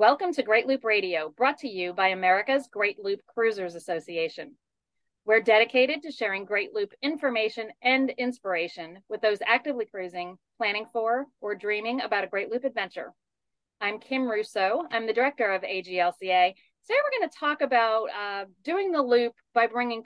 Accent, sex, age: American, female, 40-59